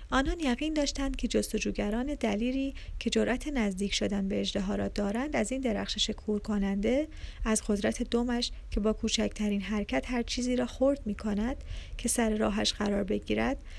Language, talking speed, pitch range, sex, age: Persian, 155 wpm, 210-265 Hz, female, 30-49